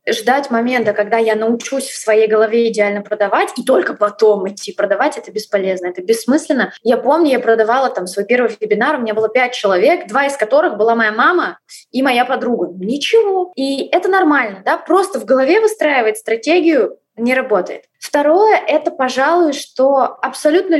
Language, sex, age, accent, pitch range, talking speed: Russian, female, 20-39, native, 225-310 Hz, 165 wpm